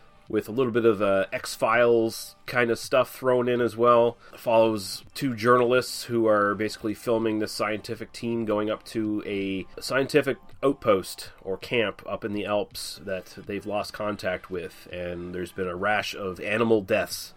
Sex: male